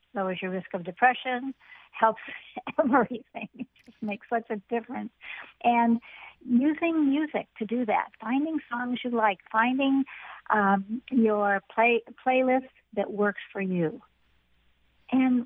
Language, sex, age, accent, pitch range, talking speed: English, female, 60-79, American, 190-245 Hz, 130 wpm